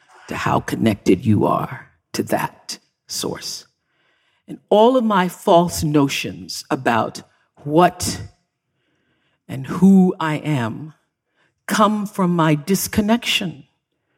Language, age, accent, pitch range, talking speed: English, 50-69, American, 145-200 Hz, 95 wpm